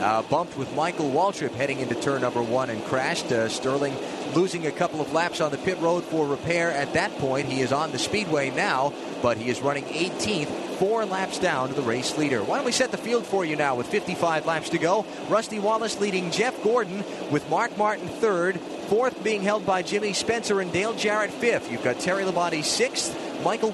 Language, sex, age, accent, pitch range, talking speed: English, male, 30-49, American, 155-210 Hz, 215 wpm